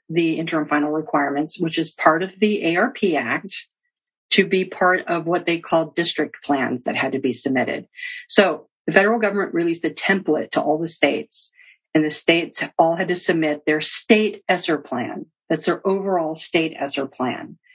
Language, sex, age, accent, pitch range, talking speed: English, female, 50-69, American, 160-210 Hz, 180 wpm